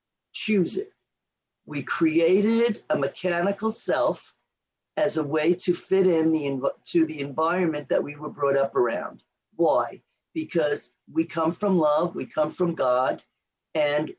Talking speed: 140 wpm